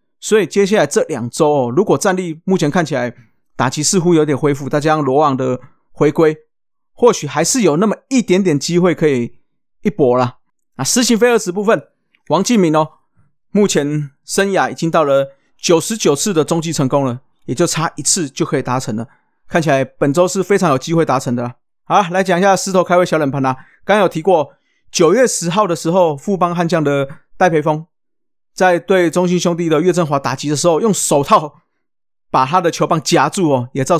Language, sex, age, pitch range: Chinese, male, 30-49, 140-185 Hz